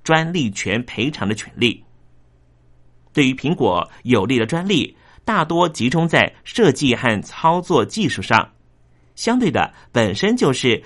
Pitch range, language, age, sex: 105-160 Hz, Chinese, 30-49, male